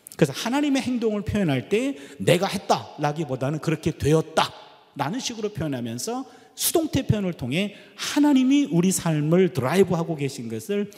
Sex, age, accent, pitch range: male, 40-59, native, 140-200 Hz